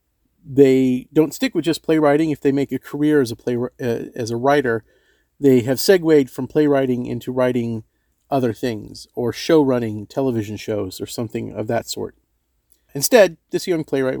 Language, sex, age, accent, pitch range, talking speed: English, male, 40-59, American, 125-160 Hz, 175 wpm